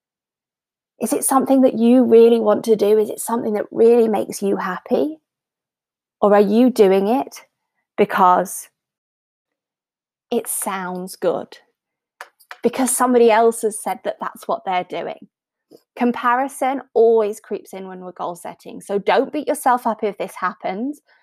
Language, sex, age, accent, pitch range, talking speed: English, female, 20-39, British, 200-245 Hz, 145 wpm